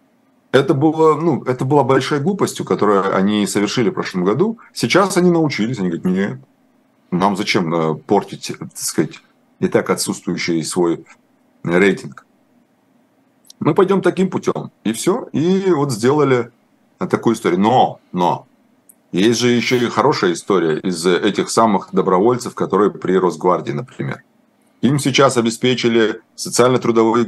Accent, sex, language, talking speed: native, male, Russian, 130 wpm